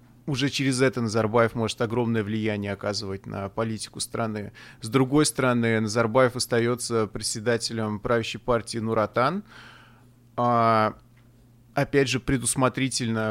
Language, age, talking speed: Russian, 30-49, 110 wpm